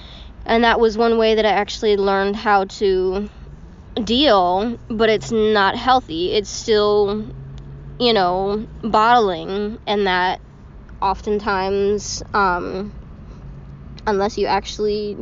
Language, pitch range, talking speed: English, 195-230 Hz, 110 wpm